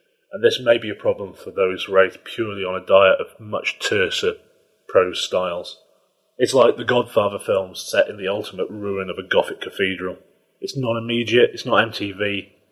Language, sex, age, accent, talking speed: English, male, 30-49, British, 175 wpm